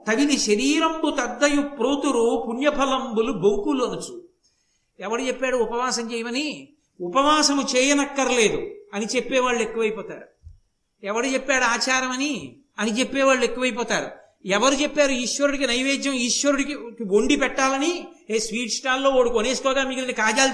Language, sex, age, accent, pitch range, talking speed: Telugu, male, 60-79, native, 220-275 Hz, 105 wpm